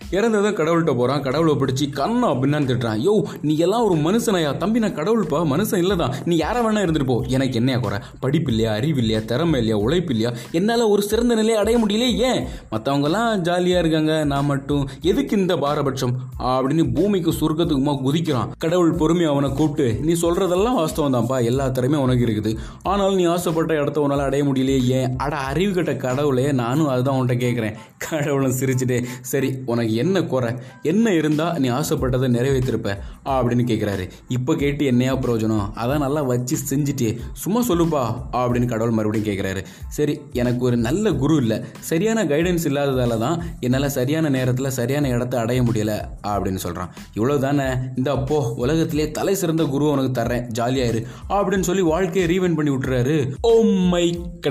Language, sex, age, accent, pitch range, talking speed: Tamil, male, 20-39, native, 125-165 Hz, 100 wpm